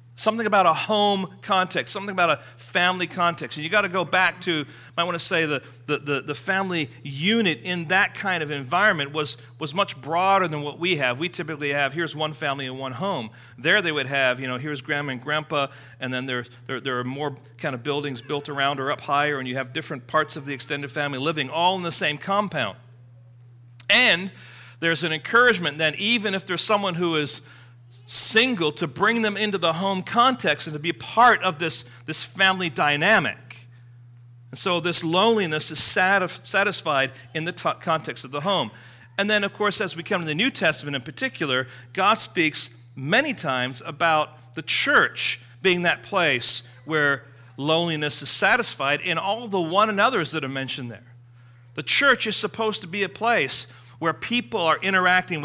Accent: American